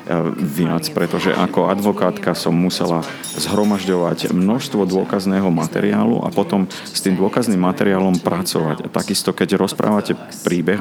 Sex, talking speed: male, 115 wpm